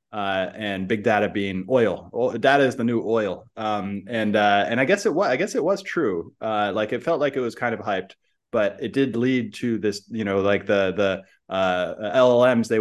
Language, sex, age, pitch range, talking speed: English, male, 20-39, 100-120 Hz, 230 wpm